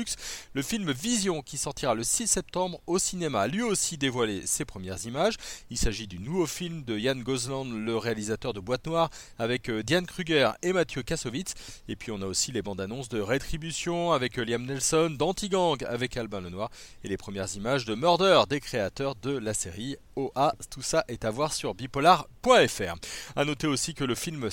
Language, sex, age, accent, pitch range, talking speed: French, male, 40-59, French, 110-165 Hz, 190 wpm